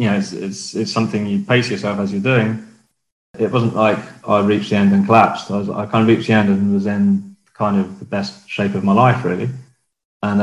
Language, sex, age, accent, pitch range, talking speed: English, male, 20-39, British, 105-125 Hz, 240 wpm